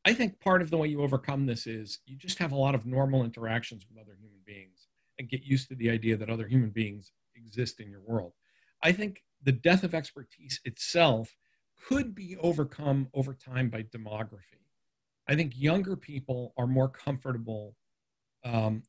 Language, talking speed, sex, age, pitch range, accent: English, 185 wpm, male, 50-69, 120-150 Hz, American